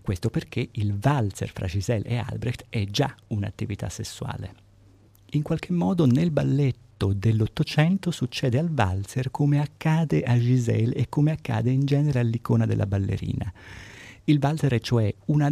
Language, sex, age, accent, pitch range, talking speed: Italian, male, 50-69, native, 105-135 Hz, 145 wpm